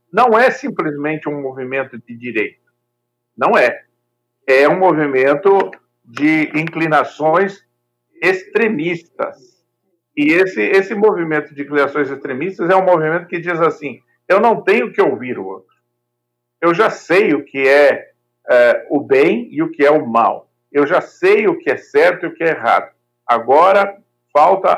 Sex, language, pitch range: male, Portuguese, 120-185 Hz